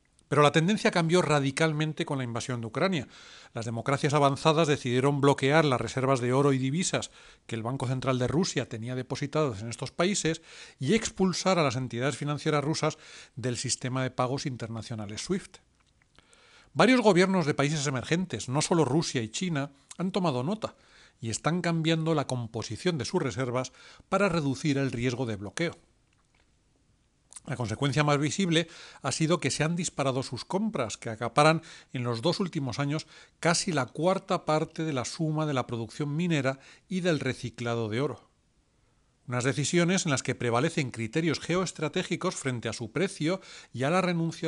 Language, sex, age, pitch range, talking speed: Spanish, male, 40-59, 125-160 Hz, 165 wpm